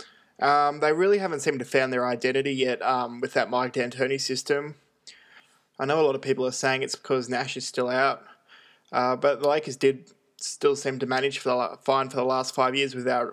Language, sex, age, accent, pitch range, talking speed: English, male, 20-39, Australian, 130-140 Hz, 205 wpm